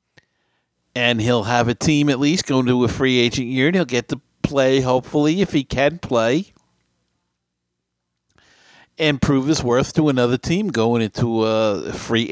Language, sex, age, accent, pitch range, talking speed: English, male, 50-69, American, 110-140 Hz, 165 wpm